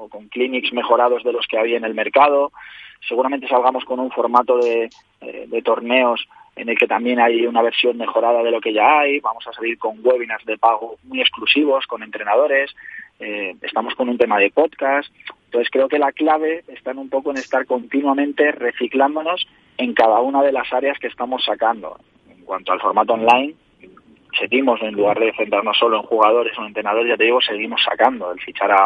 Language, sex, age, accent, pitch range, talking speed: Spanish, male, 20-39, Spanish, 110-135 Hz, 200 wpm